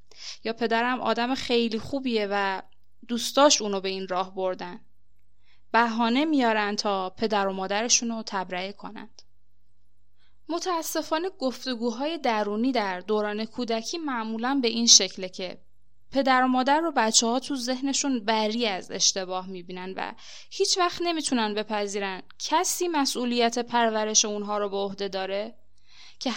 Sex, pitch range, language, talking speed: female, 200-270 Hz, Persian, 125 wpm